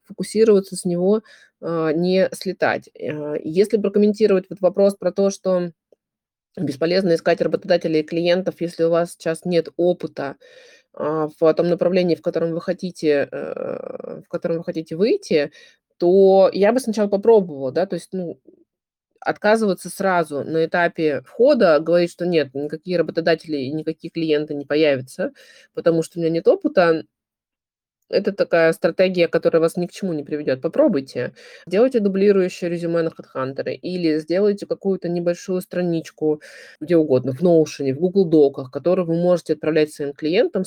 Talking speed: 145 wpm